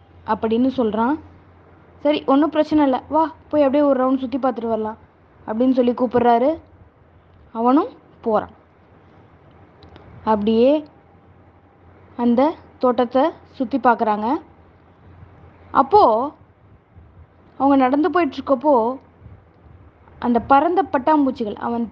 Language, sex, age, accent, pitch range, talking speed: Tamil, female, 20-39, native, 225-290 Hz, 90 wpm